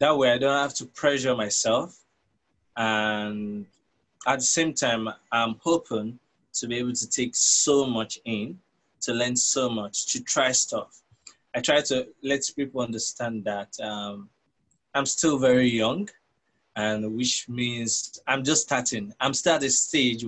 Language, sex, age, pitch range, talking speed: English, male, 20-39, 110-130 Hz, 155 wpm